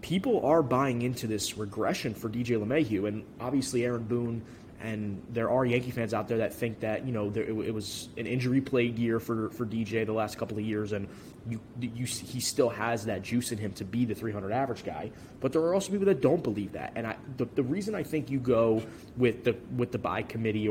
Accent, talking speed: American, 235 wpm